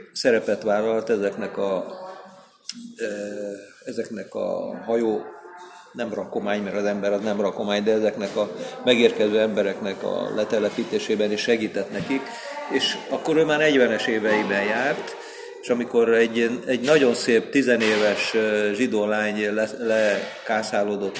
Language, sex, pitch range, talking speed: Hungarian, male, 105-130 Hz, 120 wpm